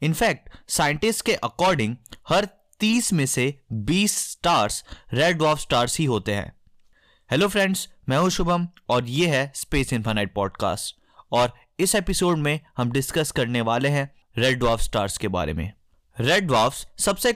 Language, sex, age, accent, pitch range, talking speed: Hindi, male, 20-39, native, 120-190 Hz, 155 wpm